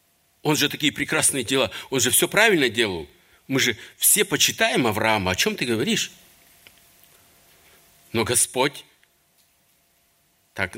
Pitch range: 110-160 Hz